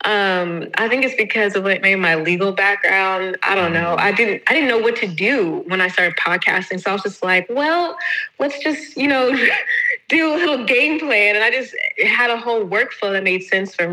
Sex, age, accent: female, 20-39, American